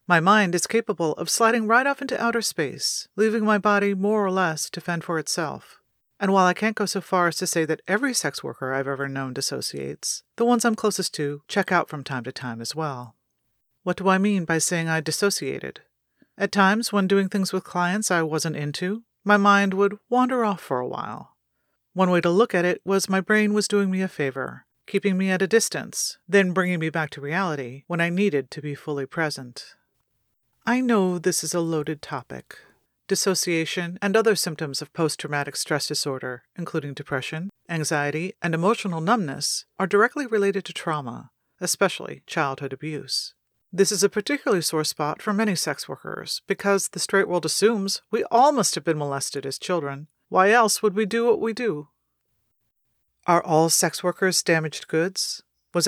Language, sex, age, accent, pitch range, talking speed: English, female, 40-59, American, 155-200 Hz, 190 wpm